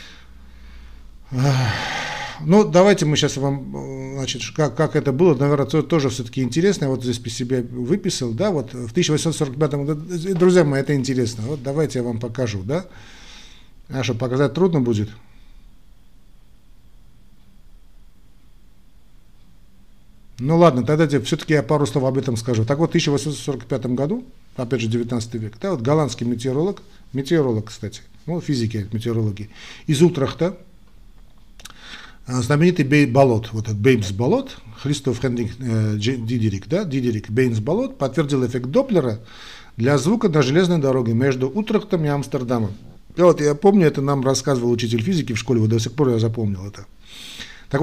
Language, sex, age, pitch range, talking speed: Russian, male, 50-69, 115-155 Hz, 145 wpm